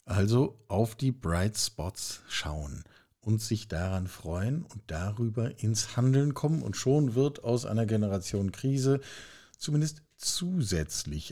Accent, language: German, German